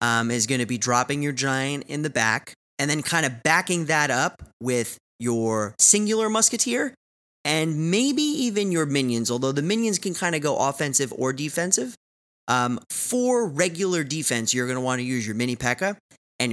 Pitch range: 120-160 Hz